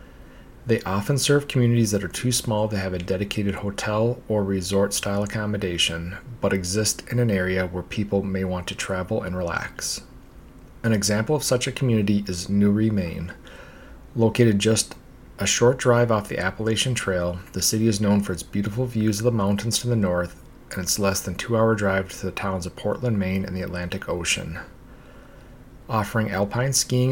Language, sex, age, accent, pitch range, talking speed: English, male, 30-49, American, 95-110 Hz, 175 wpm